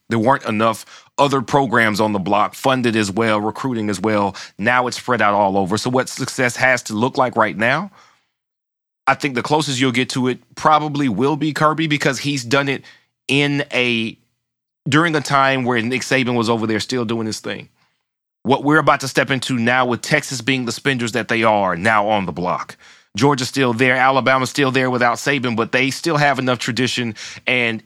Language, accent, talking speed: English, American, 200 wpm